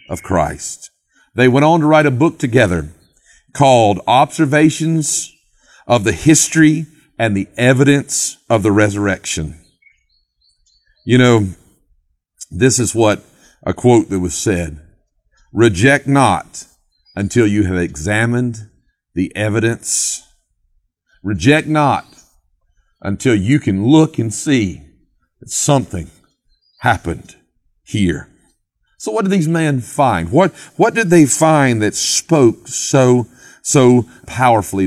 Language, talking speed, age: English, 115 wpm, 50-69